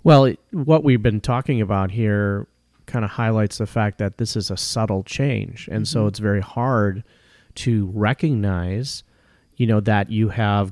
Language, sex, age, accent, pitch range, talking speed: English, male, 30-49, American, 95-115 Hz, 170 wpm